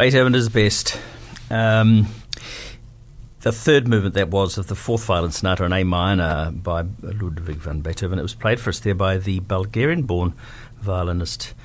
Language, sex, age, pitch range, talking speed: English, male, 60-79, 90-120 Hz, 160 wpm